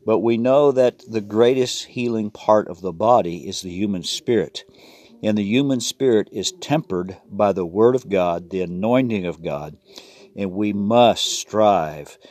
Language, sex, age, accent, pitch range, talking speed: English, male, 50-69, American, 95-120 Hz, 165 wpm